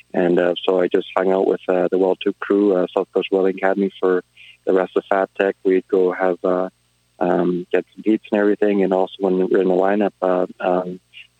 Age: 20-39